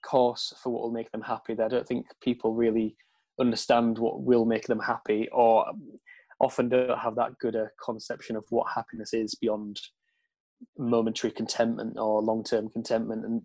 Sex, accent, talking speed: male, British, 165 wpm